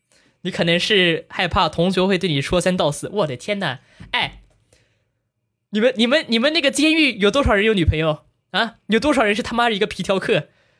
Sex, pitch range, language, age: male, 145-210 Hz, Chinese, 20-39